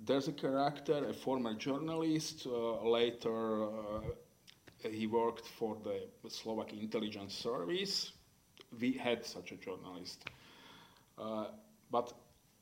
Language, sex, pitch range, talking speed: French, male, 105-120 Hz, 110 wpm